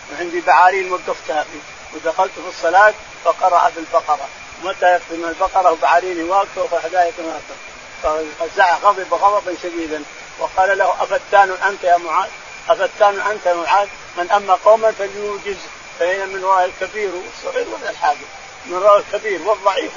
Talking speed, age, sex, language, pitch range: 130 wpm, 50-69, male, Arabic, 175-225 Hz